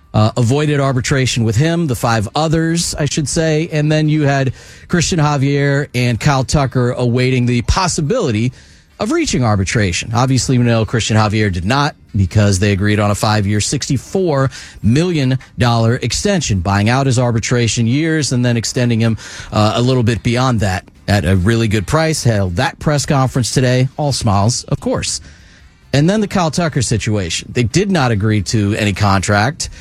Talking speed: 170 wpm